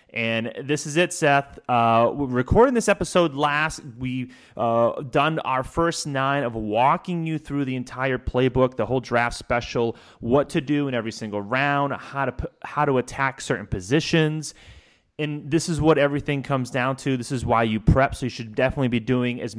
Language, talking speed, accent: English, 195 wpm, American